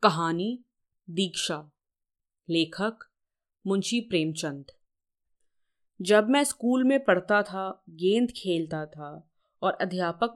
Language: Hindi